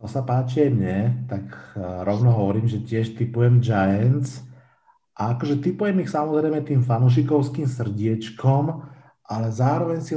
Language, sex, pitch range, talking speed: Slovak, male, 115-130 Hz, 135 wpm